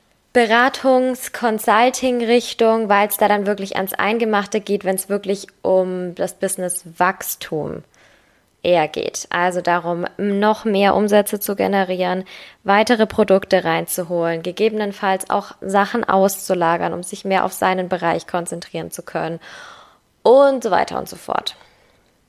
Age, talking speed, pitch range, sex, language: 10-29, 125 wpm, 185-220 Hz, female, German